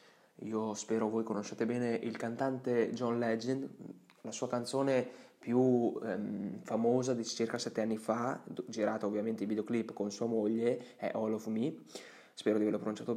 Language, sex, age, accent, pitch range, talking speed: Italian, male, 20-39, native, 105-120 Hz, 160 wpm